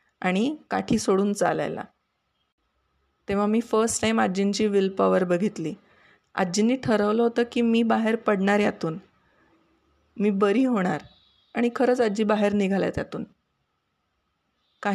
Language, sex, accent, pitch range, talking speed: Marathi, female, native, 190-220 Hz, 110 wpm